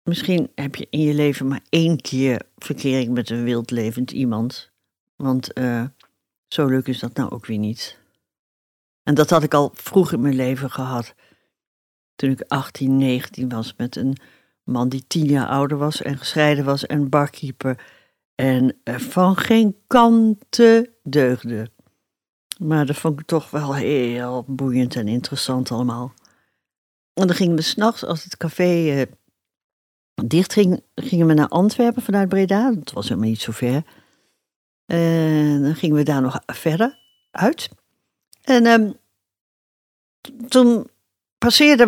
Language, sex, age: Dutch, female, 60-79